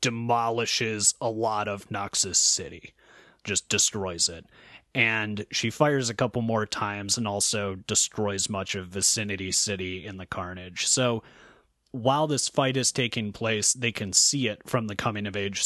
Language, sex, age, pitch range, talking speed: English, male, 30-49, 95-115 Hz, 160 wpm